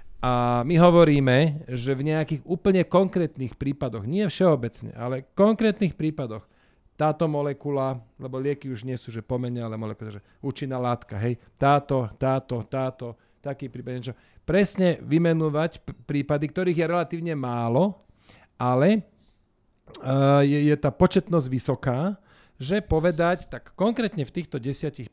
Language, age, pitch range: Slovak, 40-59, 125-160 Hz